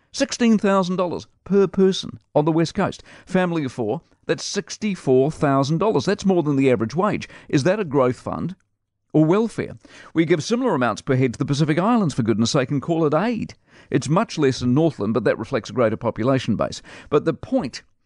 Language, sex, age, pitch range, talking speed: English, male, 50-69, 120-155 Hz, 185 wpm